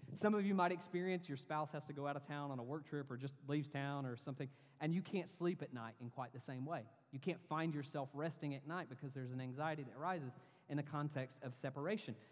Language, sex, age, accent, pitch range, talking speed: English, male, 30-49, American, 140-180 Hz, 255 wpm